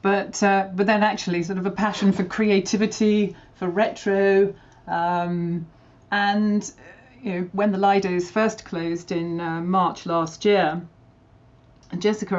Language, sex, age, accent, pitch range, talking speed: English, female, 40-59, British, 165-200 Hz, 135 wpm